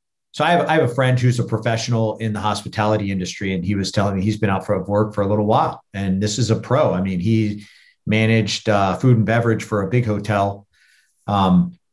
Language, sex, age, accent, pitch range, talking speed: English, male, 50-69, American, 105-125 Hz, 235 wpm